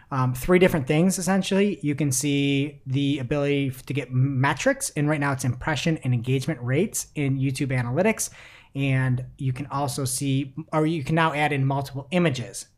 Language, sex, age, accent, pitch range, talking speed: English, male, 30-49, American, 125-155 Hz, 175 wpm